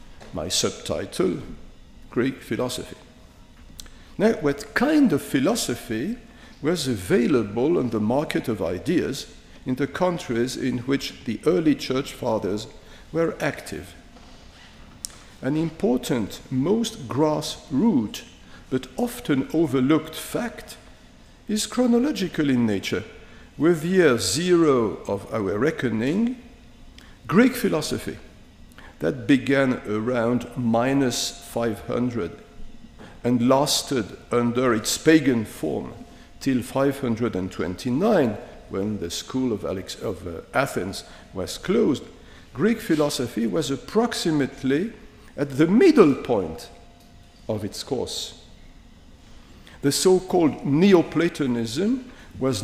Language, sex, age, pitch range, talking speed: English, male, 50-69, 120-180 Hz, 95 wpm